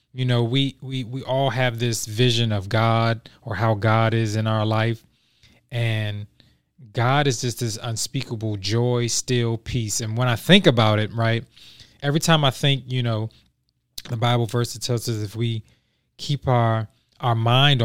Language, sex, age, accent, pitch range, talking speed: English, male, 20-39, American, 115-130 Hz, 175 wpm